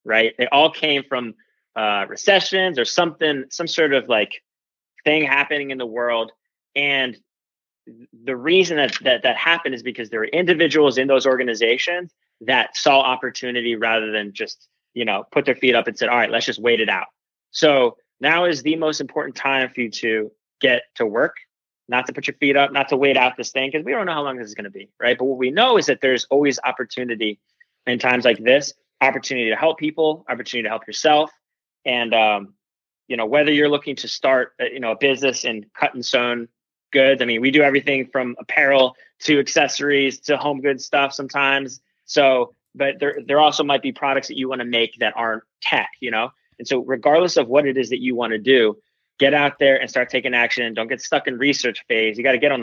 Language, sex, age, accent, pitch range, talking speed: English, male, 30-49, American, 120-145 Hz, 220 wpm